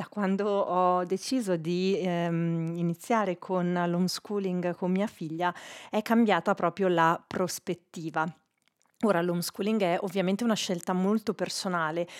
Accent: native